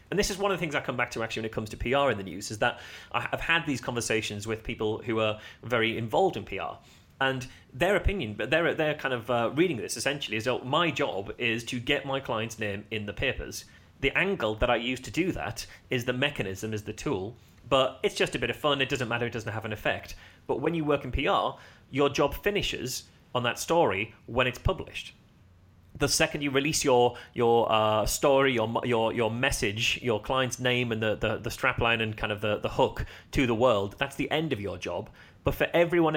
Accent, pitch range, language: British, 110-140 Hz, English